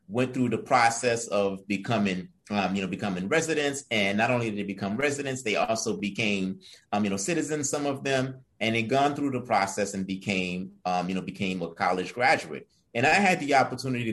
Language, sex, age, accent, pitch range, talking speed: English, male, 30-49, American, 100-125 Hz, 205 wpm